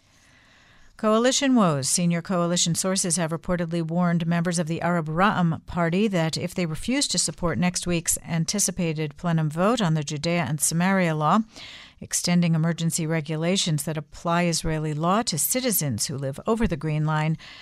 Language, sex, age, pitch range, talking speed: English, female, 50-69, 155-190 Hz, 155 wpm